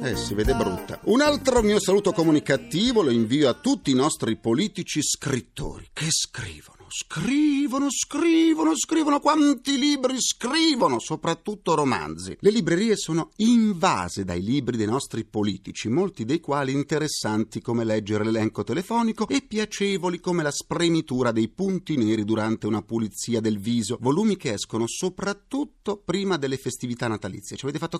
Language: Italian